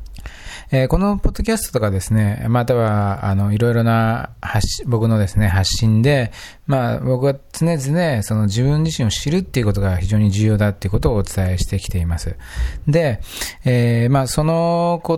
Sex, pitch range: male, 95-120 Hz